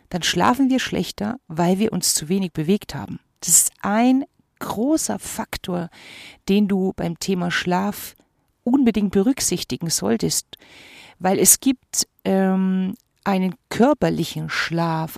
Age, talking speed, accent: 40-59, 125 wpm, German